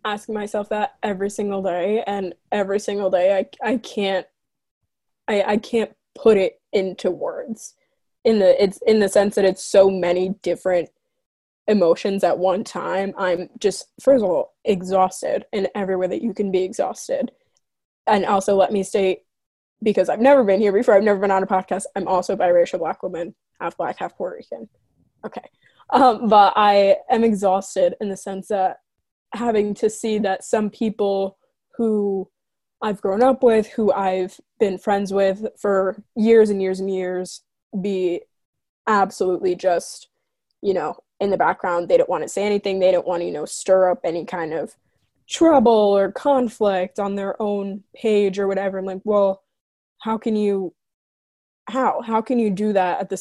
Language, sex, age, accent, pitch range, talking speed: English, female, 20-39, American, 190-225 Hz, 175 wpm